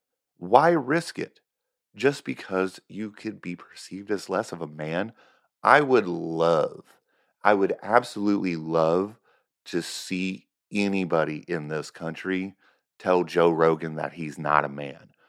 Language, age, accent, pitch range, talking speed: English, 30-49, American, 80-100 Hz, 135 wpm